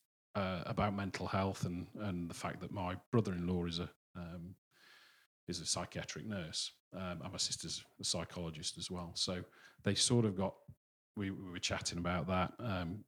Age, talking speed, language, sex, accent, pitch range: 40-59, 175 wpm, English, male, British, 90-100 Hz